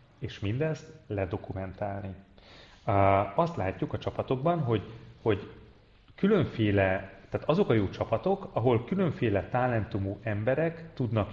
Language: Hungarian